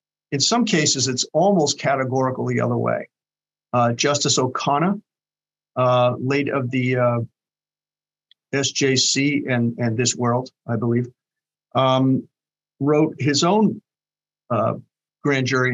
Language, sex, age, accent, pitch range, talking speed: English, male, 50-69, American, 125-155 Hz, 120 wpm